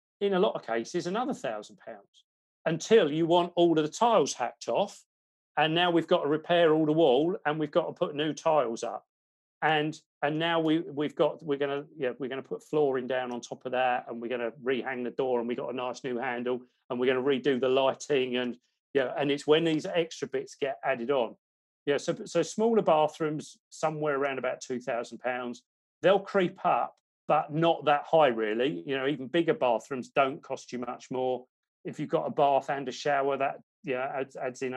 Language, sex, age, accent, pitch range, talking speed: Swedish, male, 40-59, British, 125-165 Hz, 210 wpm